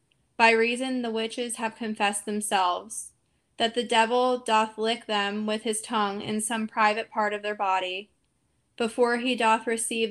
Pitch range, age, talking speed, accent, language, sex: 210-240 Hz, 10-29, 160 wpm, American, English, female